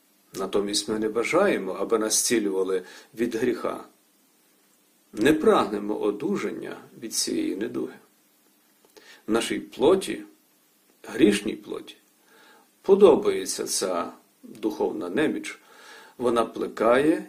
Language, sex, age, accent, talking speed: Ukrainian, male, 50-69, native, 90 wpm